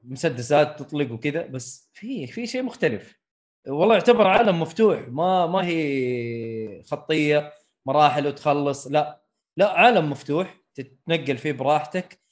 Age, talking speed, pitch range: 20-39, 120 wpm, 130-185 Hz